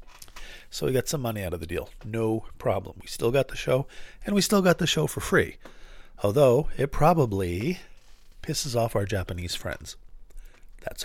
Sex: male